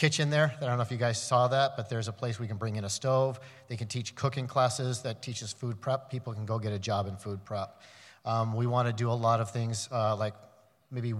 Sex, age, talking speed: male, 40-59, 270 wpm